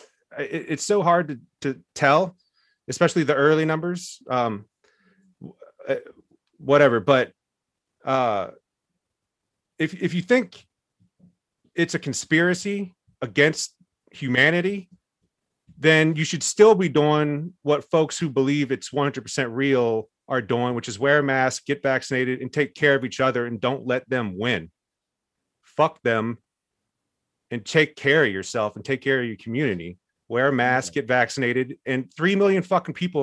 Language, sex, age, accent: English, male, 30-49, American